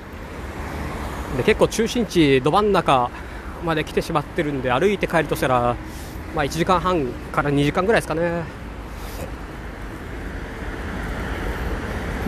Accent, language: native, Japanese